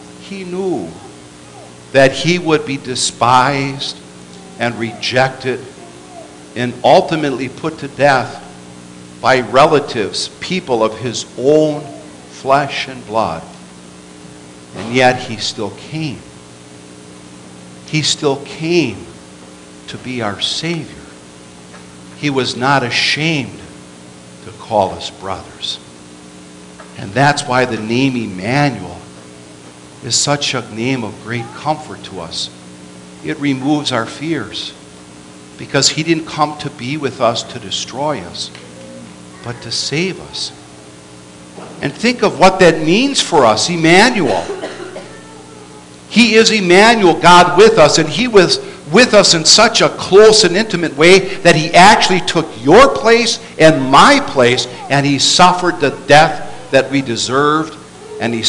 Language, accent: Italian, American